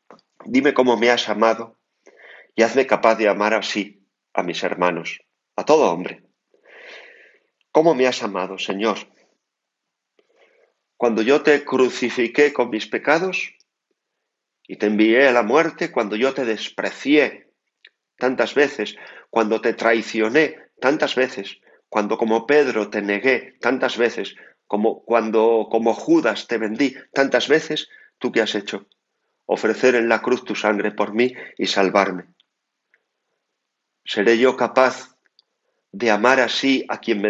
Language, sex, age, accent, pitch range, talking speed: Spanish, male, 40-59, Spanish, 115-150 Hz, 135 wpm